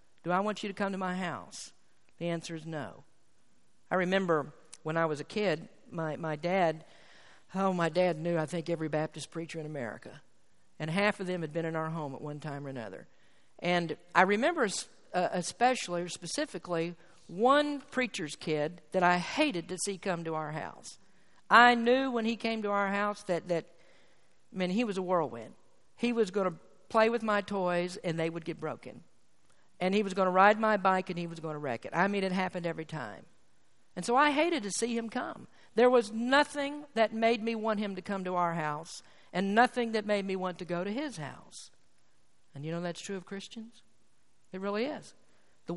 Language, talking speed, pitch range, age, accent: English, 210 wpm, 165-220 Hz, 50-69, American